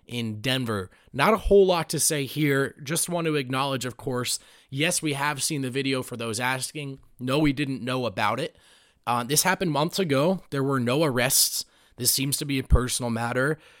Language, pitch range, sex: English, 120-150 Hz, male